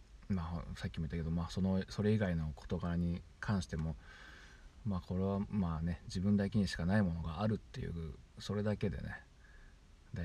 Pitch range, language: 80-100 Hz, Japanese